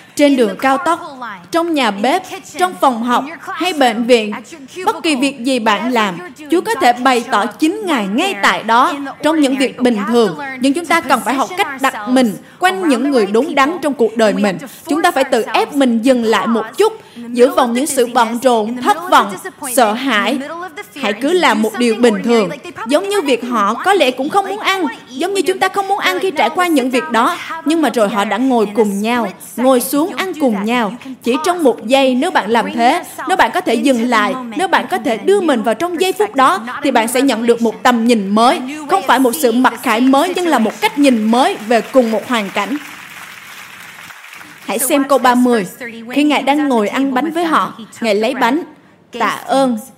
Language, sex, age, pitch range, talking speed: Vietnamese, female, 20-39, 230-305 Hz, 220 wpm